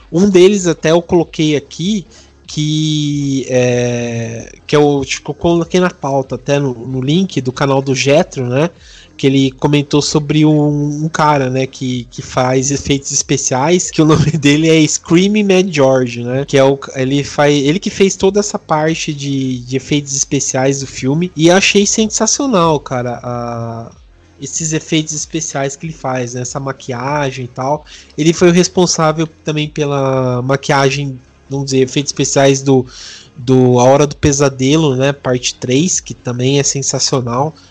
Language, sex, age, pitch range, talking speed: Portuguese, male, 20-39, 130-155 Hz, 165 wpm